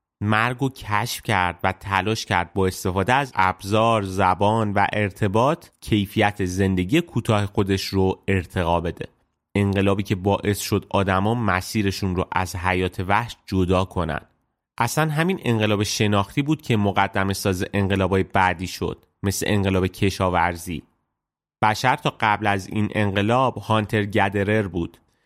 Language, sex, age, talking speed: Persian, male, 30-49, 130 wpm